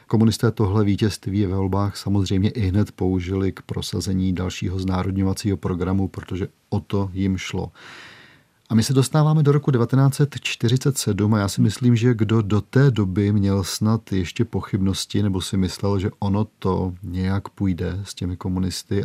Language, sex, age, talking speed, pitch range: Czech, male, 40-59, 160 wpm, 95-110 Hz